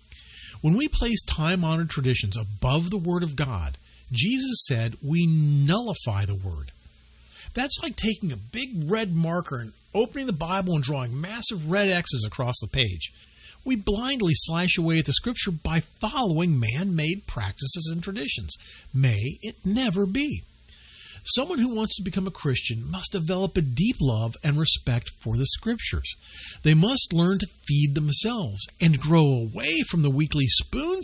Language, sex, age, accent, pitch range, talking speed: English, male, 50-69, American, 120-190 Hz, 160 wpm